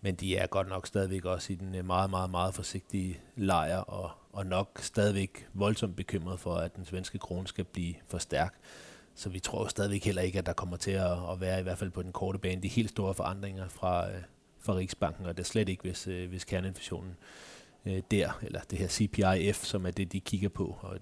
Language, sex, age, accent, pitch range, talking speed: Danish, male, 30-49, native, 90-100 Hz, 215 wpm